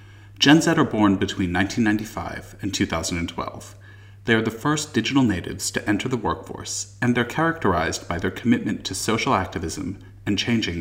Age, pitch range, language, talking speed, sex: 40-59, 95-115 Hz, English, 160 wpm, male